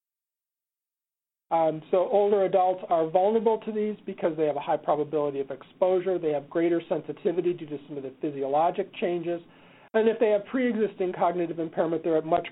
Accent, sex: American, male